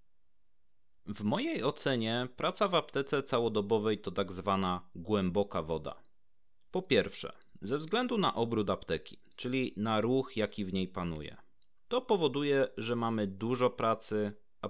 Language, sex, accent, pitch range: Polish, male, native, 100-125 Hz